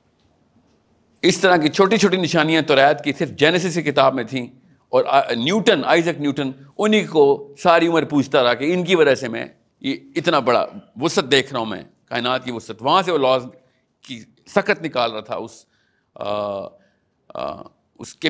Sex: male